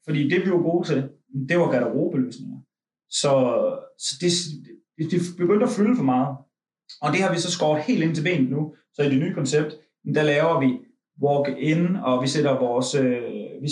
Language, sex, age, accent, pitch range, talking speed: Danish, male, 30-49, native, 130-170 Hz, 185 wpm